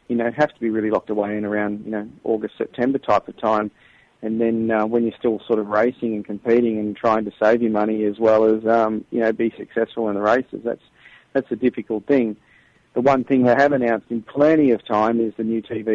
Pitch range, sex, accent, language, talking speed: 110-120 Hz, male, Australian, English, 240 wpm